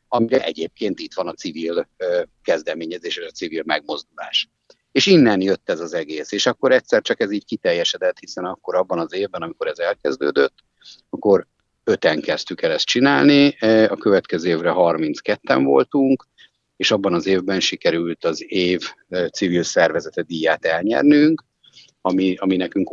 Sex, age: male, 50-69